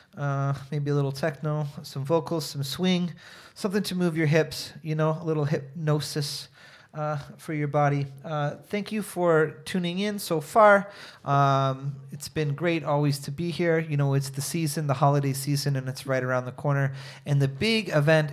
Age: 30-49